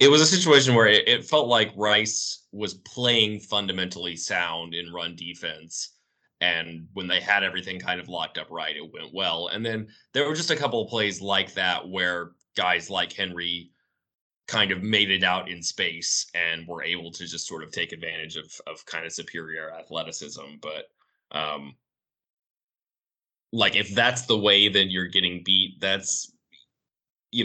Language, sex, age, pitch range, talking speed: English, male, 20-39, 85-110 Hz, 175 wpm